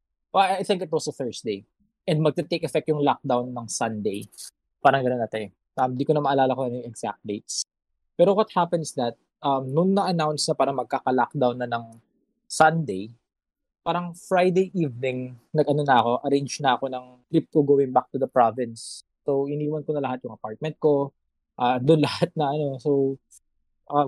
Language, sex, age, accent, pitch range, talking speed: English, male, 20-39, Filipino, 125-160 Hz, 180 wpm